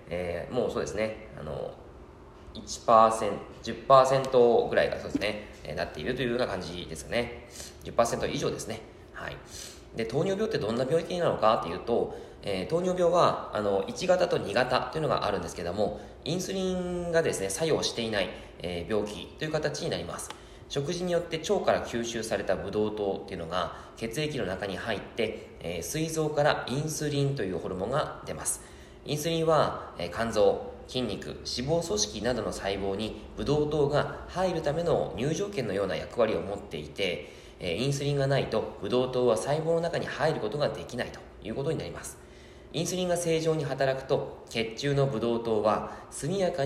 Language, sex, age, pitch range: Japanese, male, 20-39, 105-155 Hz